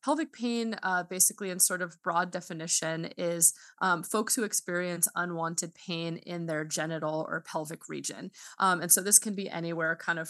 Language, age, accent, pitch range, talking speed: English, 20-39, American, 165-200 Hz, 180 wpm